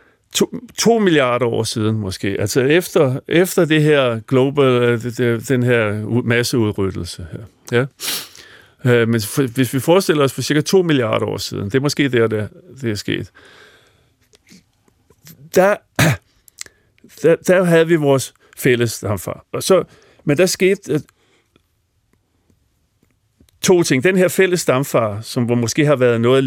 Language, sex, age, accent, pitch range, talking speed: Danish, male, 50-69, native, 110-155 Hz, 130 wpm